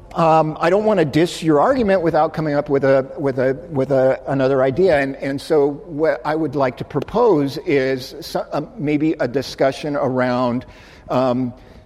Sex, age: male, 50-69